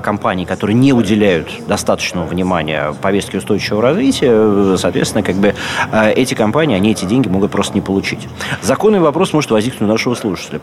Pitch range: 90-115 Hz